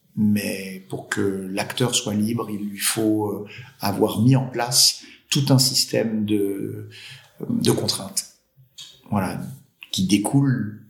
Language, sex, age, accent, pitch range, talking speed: French, male, 50-69, French, 100-125 Hz, 120 wpm